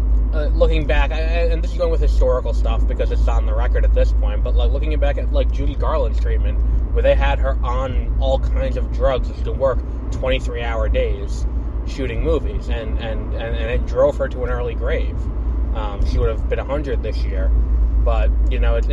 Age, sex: 20-39, male